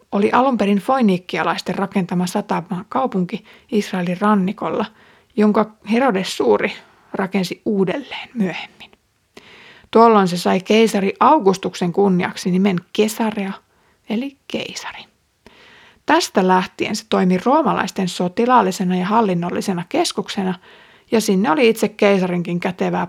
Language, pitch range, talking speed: Finnish, 185-225 Hz, 105 wpm